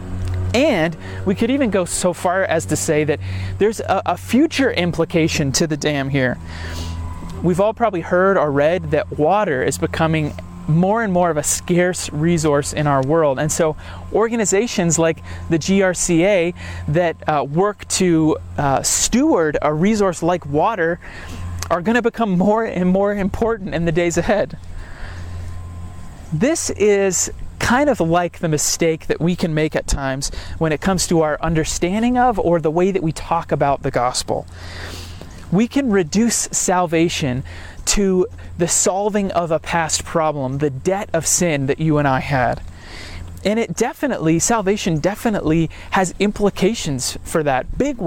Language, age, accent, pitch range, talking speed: English, 30-49, American, 125-185 Hz, 160 wpm